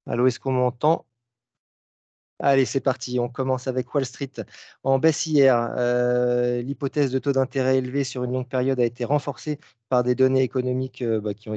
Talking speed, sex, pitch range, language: 180 wpm, male, 115-135 Hz, French